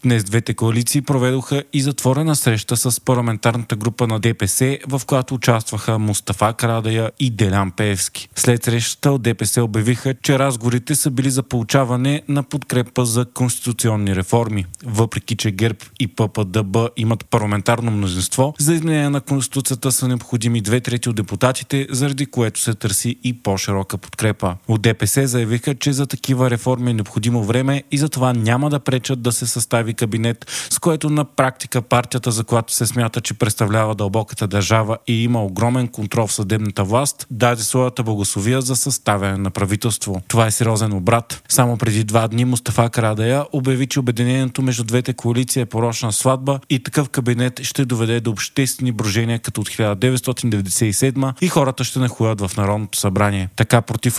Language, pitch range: Bulgarian, 110-130 Hz